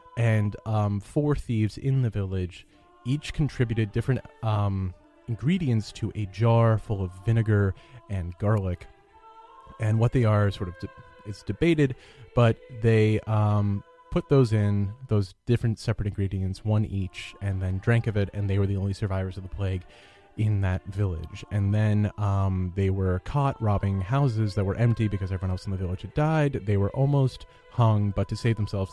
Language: English